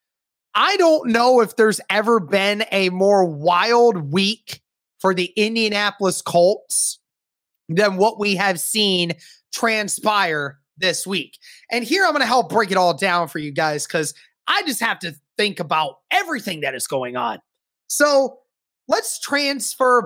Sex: male